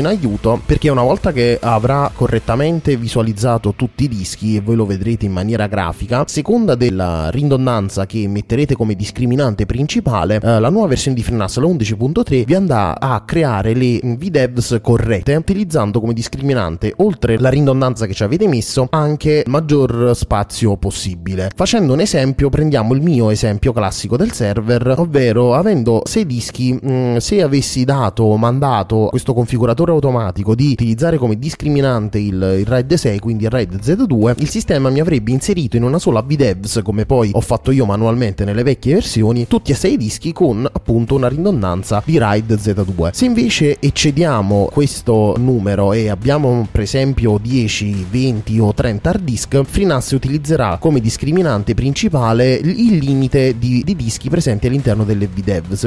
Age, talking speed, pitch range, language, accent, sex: 20-39, 160 wpm, 110-140 Hz, Italian, native, male